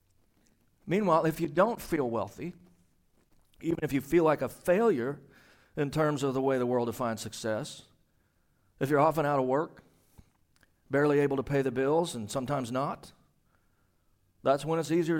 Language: English